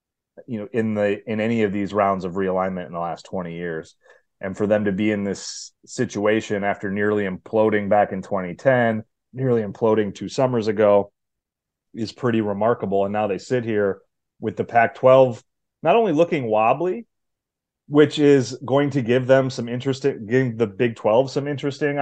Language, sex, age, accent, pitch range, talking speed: English, male, 30-49, American, 100-130 Hz, 175 wpm